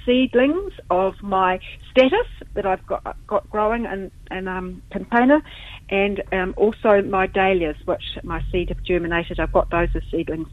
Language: English